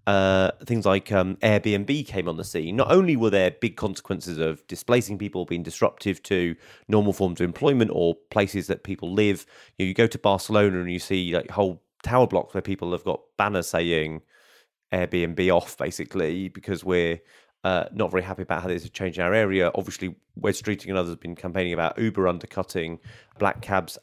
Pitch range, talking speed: 90-110 Hz, 195 wpm